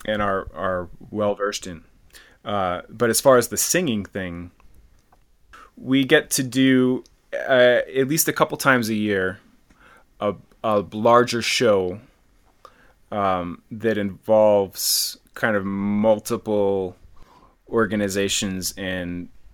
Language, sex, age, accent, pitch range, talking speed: English, male, 20-39, American, 95-115 Hz, 115 wpm